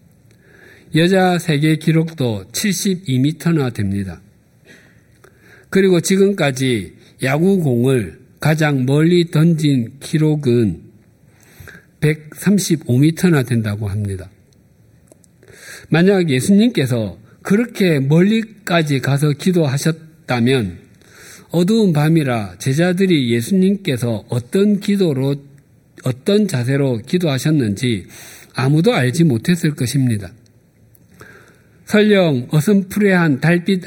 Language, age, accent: Korean, 50-69, native